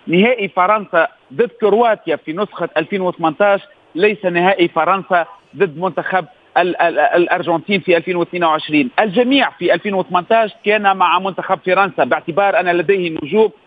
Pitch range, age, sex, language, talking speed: 180-220 Hz, 40-59, male, Arabic, 125 wpm